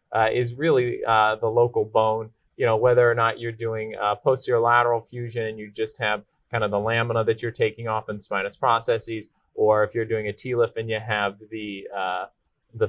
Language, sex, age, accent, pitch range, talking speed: English, male, 30-49, American, 110-155 Hz, 210 wpm